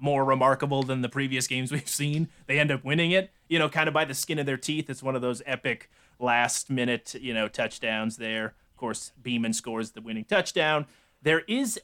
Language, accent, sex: English, American, male